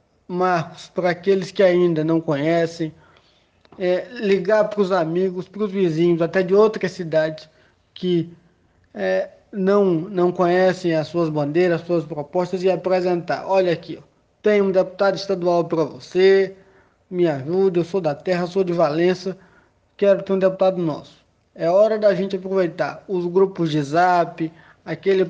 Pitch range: 170-195 Hz